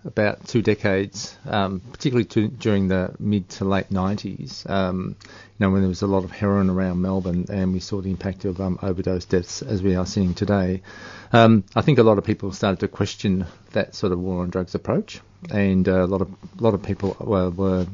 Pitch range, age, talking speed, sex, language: 95-110 Hz, 40-59, 205 wpm, male, English